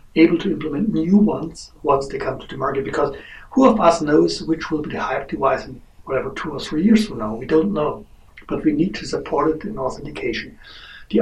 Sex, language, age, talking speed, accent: male, English, 60-79, 225 wpm, German